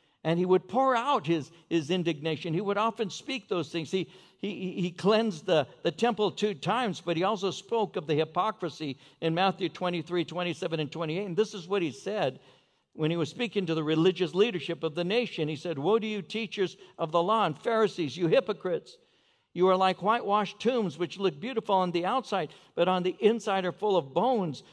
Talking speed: 205 wpm